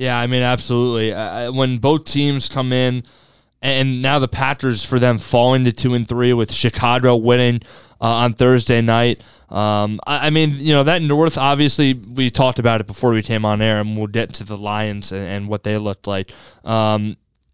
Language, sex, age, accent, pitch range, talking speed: English, male, 20-39, American, 120-145 Hz, 200 wpm